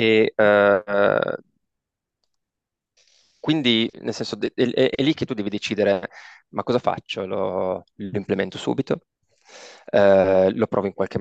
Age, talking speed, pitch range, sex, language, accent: 20-39, 135 wpm, 100-115 Hz, male, Italian, native